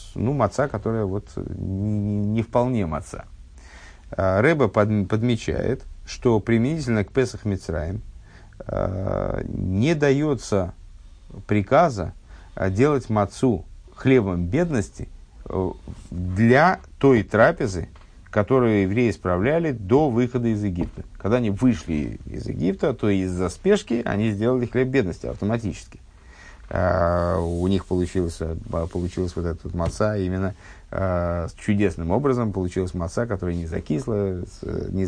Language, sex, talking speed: Russian, male, 105 wpm